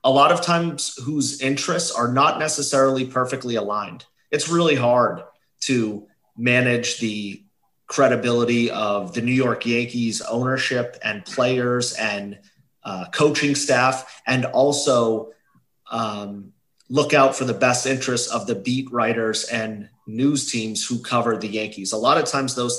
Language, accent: English, American